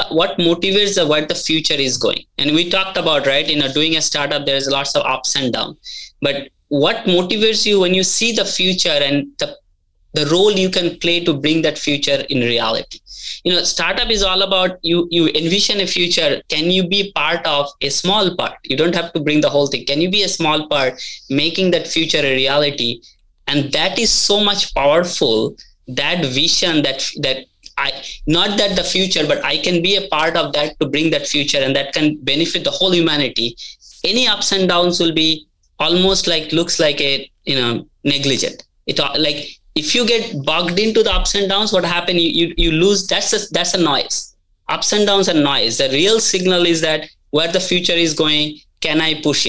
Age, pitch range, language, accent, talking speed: 20-39, 145-185 Hz, English, Indian, 210 wpm